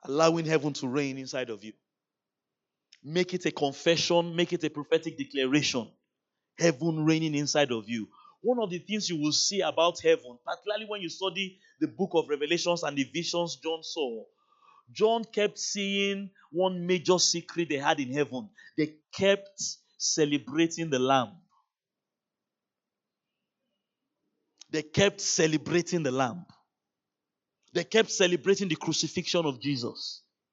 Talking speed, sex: 140 wpm, male